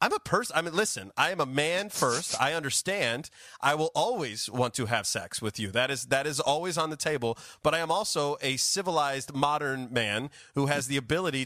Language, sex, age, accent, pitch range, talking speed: English, male, 30-49, American, 130-170 Hz, 220 wpm